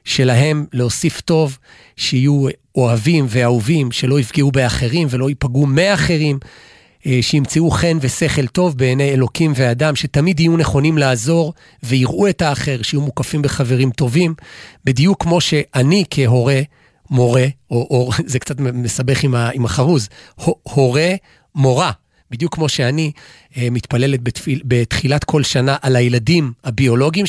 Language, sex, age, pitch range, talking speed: Hebrew, male, 40-59, 120-150 Hz, 125 wpm